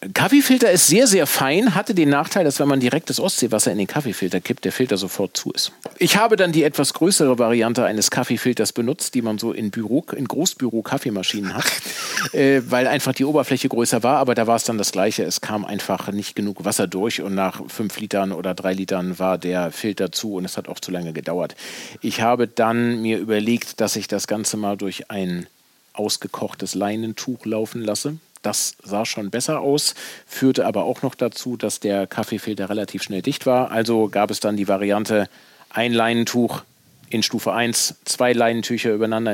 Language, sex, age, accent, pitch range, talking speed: German, male, 40-59, German, 105-125 Hz, 190 wpm